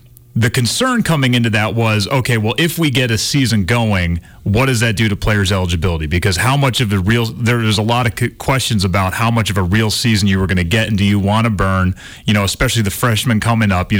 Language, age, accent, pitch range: English, 30-49, American, 105-125 Hz